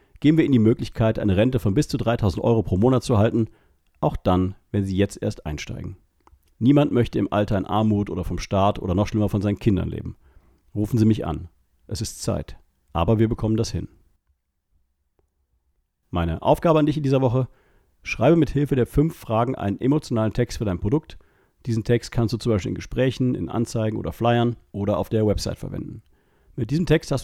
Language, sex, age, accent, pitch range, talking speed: German, male, 40-59, German, 95-125 Hz, 200 wpm